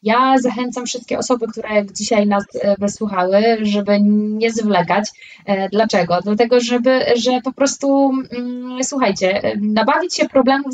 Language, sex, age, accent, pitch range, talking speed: English, female, 20-39, Polish, 195-235 Hz, 125 wpm